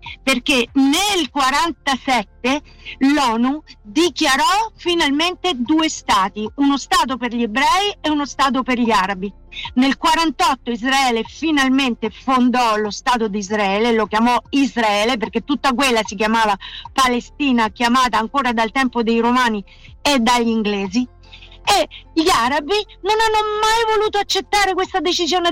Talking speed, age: 130 wpm, 50-69